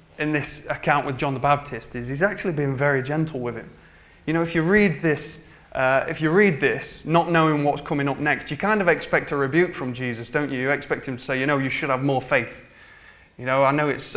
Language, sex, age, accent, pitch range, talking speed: English, male, 20-39, British, 130-155 Hz, 250 wpm